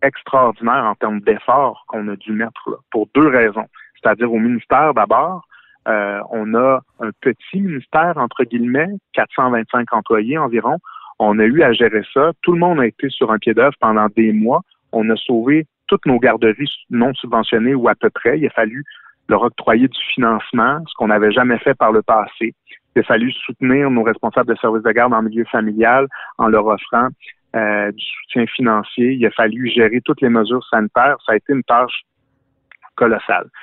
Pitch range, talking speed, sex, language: 110-135 Hz, 185 wpm, male, French